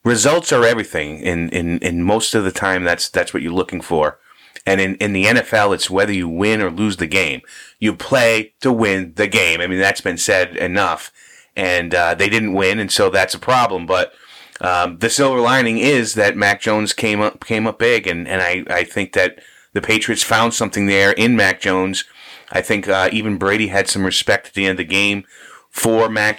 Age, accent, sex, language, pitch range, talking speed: 30-49, American, male, English, 95-115 Hz, 215 wpm